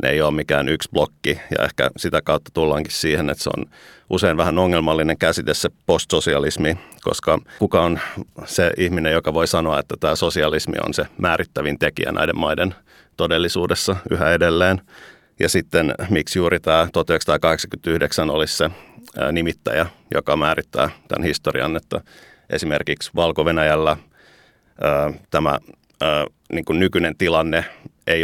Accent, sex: native, male